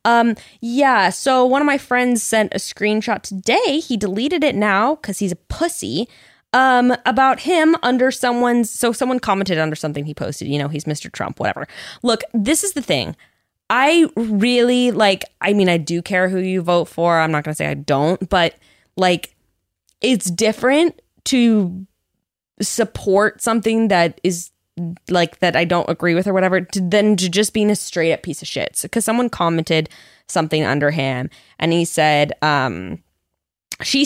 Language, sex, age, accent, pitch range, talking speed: English, female, 20-39, American, 170-245 Hz, 180 wpm